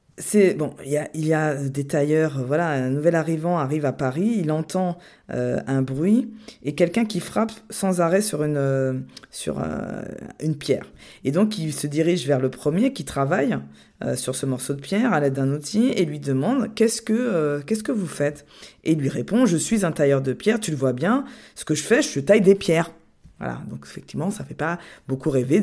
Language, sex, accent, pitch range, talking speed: French, female, French, 140-210 Hz, 225 wpm